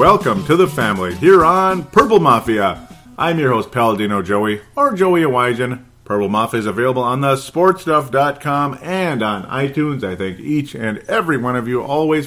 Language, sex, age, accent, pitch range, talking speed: English, male, 40-59, American, 100-130 Hz, 165 wpm